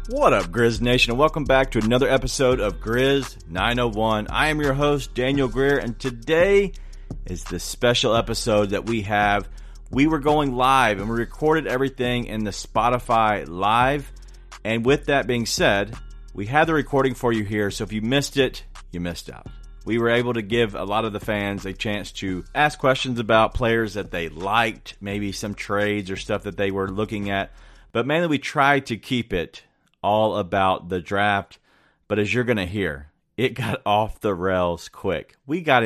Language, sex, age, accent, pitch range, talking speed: English, male, 40-59, American, 100-125 Hz, 190 wpm